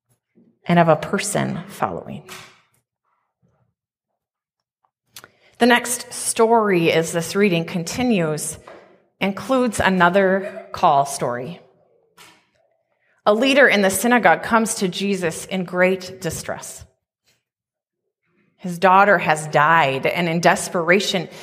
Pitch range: 170-230 Hz